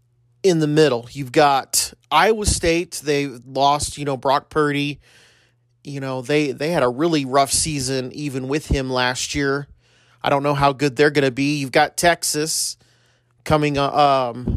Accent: American